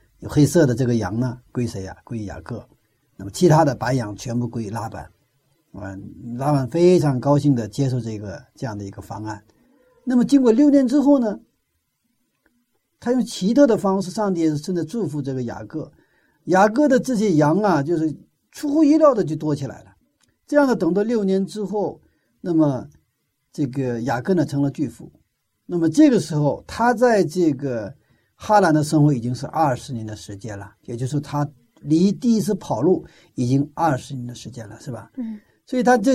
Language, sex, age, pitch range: Chinese, male, 50-69, 120-195 Hz